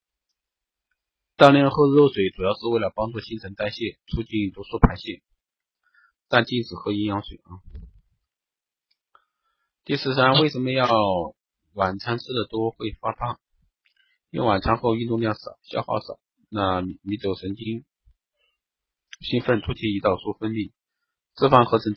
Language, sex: Chinese, male